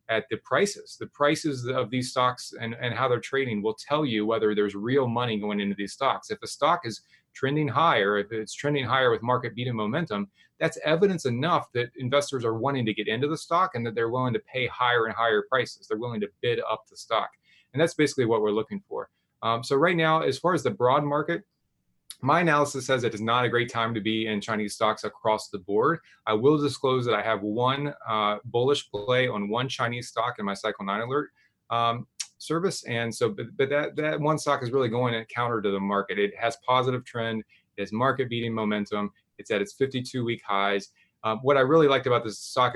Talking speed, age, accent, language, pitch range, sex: 225 wpm, 30-49, American, English, 110-135 Hz, male